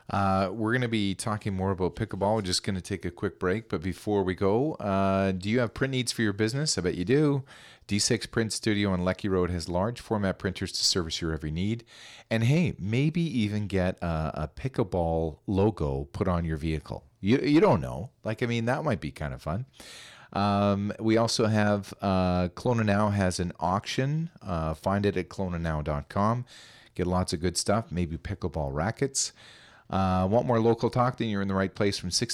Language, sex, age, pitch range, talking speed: English, male, 40-59, 90-115 Hz, 210 wpm